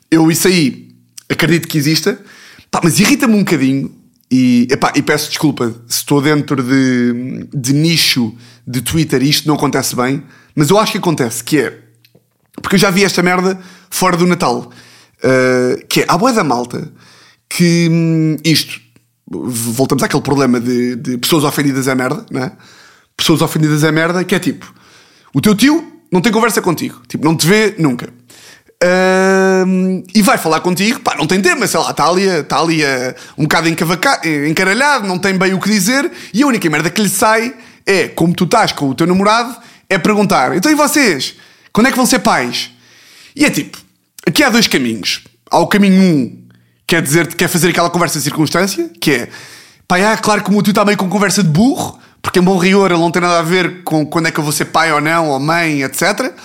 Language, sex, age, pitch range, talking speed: Portuguese, male, 20-39, 145-195 Hz, 210 wpm